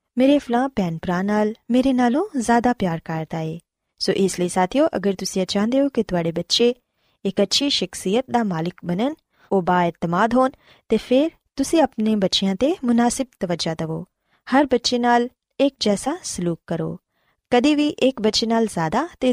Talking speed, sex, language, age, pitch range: 155 wpm, female, Punjabi, 20-39, 180-255 Hz